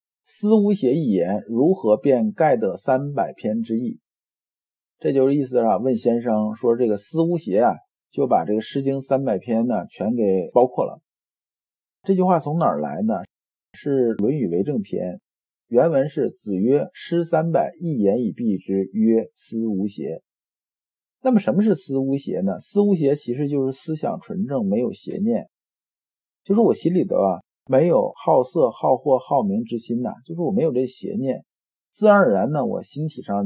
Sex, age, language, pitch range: male, 50-69, Chinese, 115-195 Hz